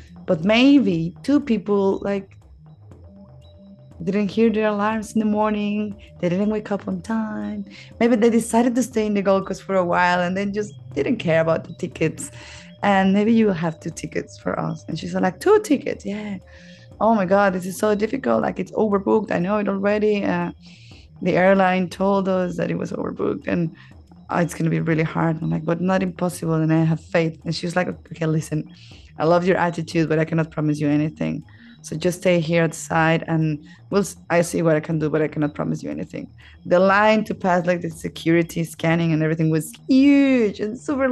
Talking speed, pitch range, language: 200 wpm, 155-200 Hz, English